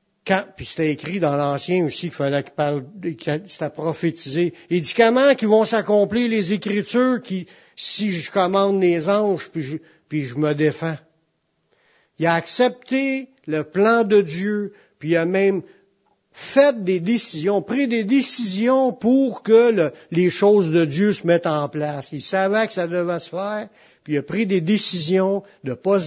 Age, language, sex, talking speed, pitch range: 60-79, French, male, 175 wpm, 165-220 Hz